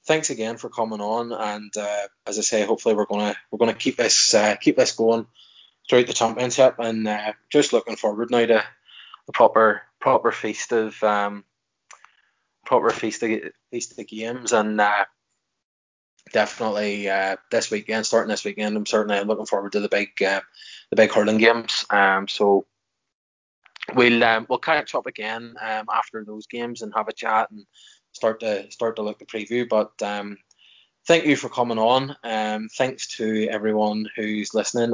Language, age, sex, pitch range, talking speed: English, 20-39, male, 105-115 Hz, 175 wpm